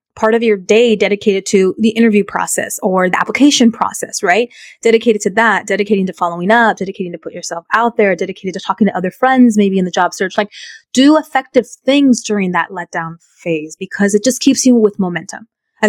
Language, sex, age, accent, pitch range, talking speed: English, female, 20-39, American, 200-255 Hz, 205 wpm